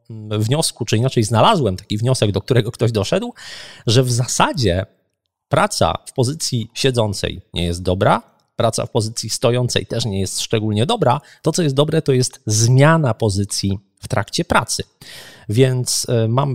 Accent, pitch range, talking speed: native, 105-130 Hz, 150 wpm